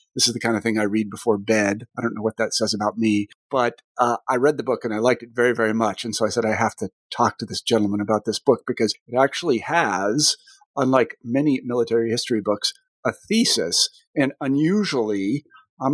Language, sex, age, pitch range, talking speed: English, male, 50-69, 115-150 Hz, 220 wpm